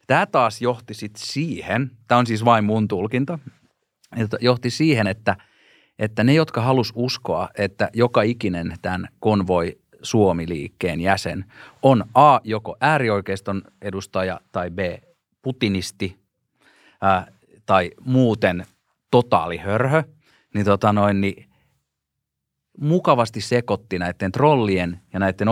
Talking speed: 115 wpm